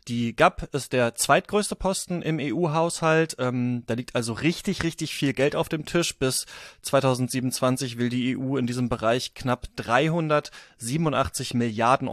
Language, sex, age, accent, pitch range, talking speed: German, male, 30-49, German, 125-150 Hz, 150 wpm